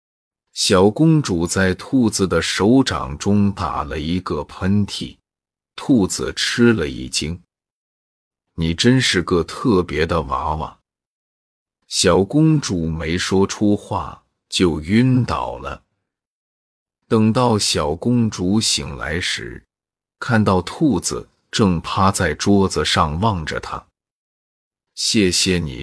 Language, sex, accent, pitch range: Chinese, male, native, 80-105 Hz